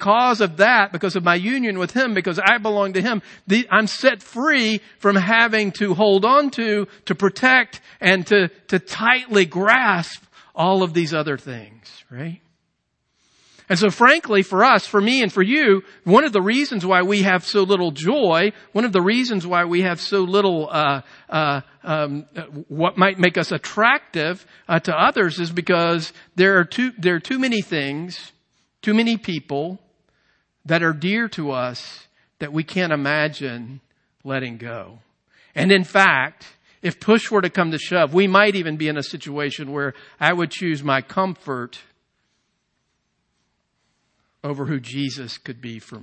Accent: American